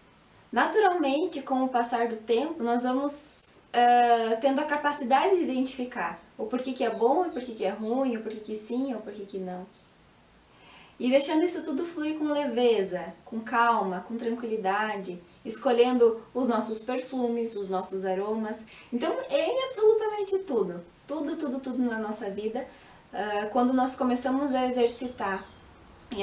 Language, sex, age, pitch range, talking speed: Portuguese, female, 20-39, 215-265 Hz, 160 wpm